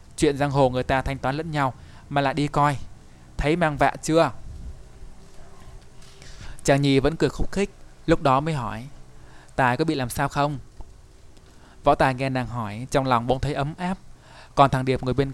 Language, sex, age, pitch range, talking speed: Vietnamese, male, 20-39, 115-145 Hz, 190 wpm